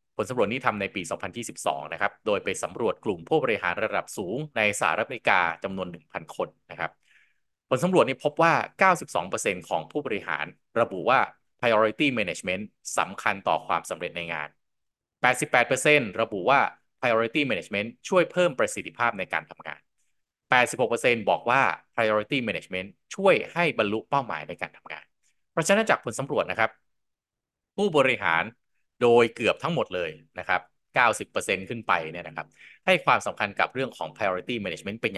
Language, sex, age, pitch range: Thai, male, 20-39, 95-145 Hz